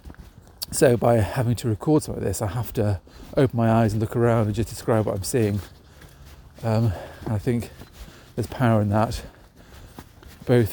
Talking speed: 180 wpm